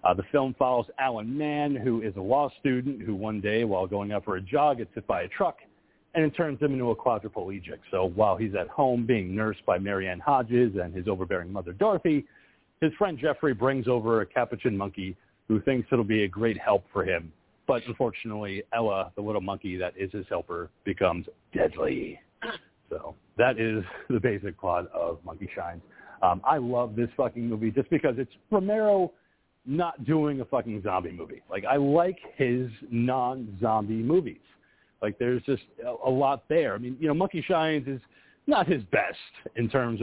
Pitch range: 105-140 Hz